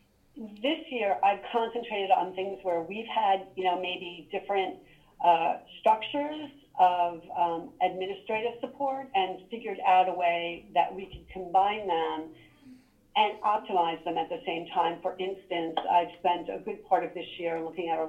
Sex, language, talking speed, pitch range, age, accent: female, English, 165 wpm, 165-190 Hz, 40-59, American